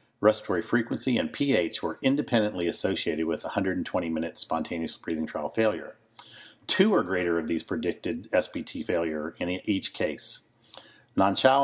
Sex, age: male, 50-69